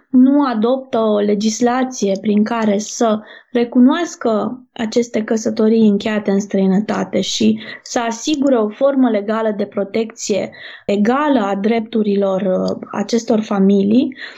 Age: 20-39